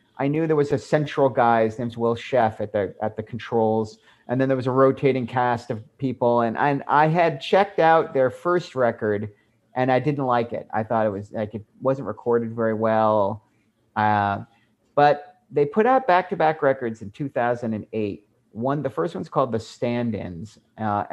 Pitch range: 110-150 Hz